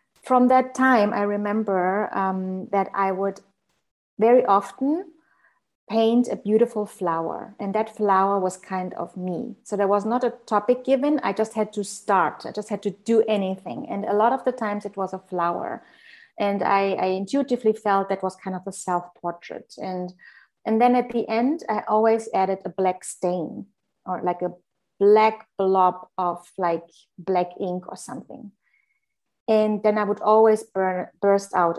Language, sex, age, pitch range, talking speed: English, female, 30-49, 190-225 Hz, 170 wpm